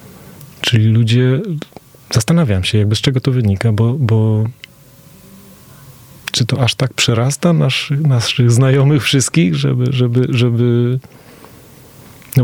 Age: 30-49